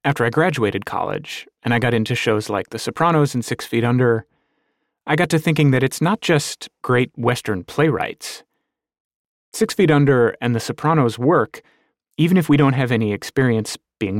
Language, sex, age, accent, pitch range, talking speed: English, male, 30-49, American, 115-150 Hz, 180 wpm